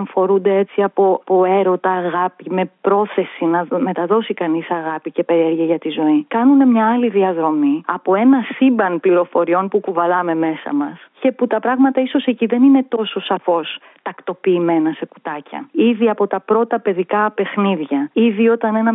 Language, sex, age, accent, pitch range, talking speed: Greek, female, 30-49, native, 180-225 Hz, 160 wpm